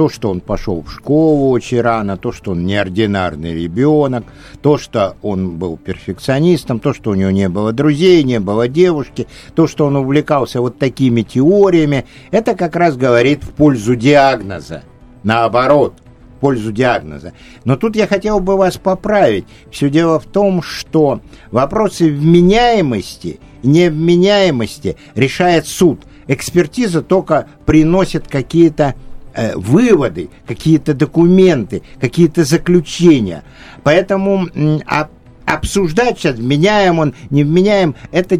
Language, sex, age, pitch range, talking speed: Russian, male, 60-79, 120-175 Hz, 130 wpm